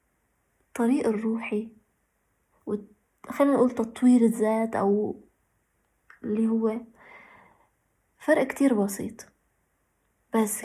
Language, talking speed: Arabic, 80 wpm